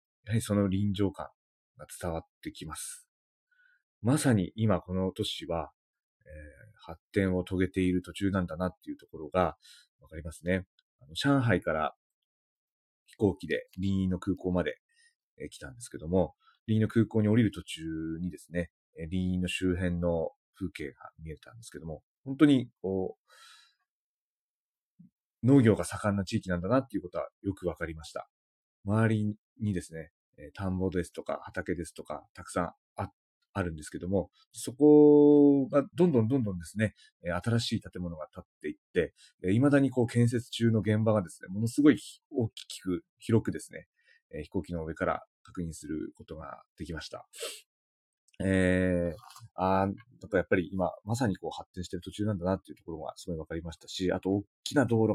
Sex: male